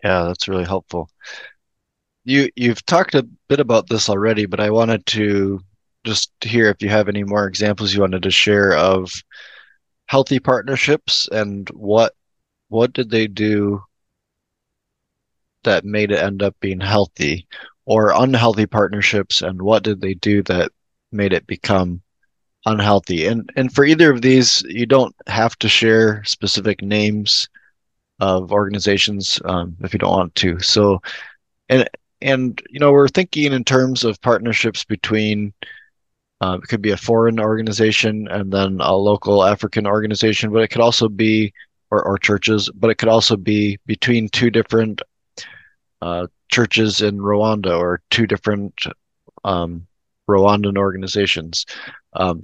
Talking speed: 150 wpm